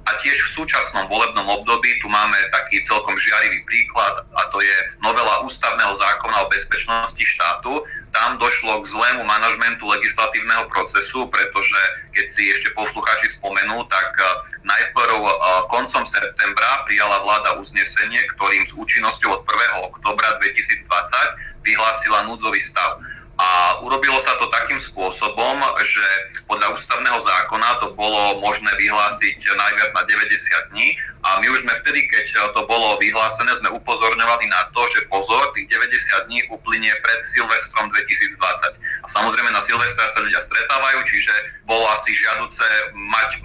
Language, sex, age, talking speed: Slovak, male, 30-49, 140 wpm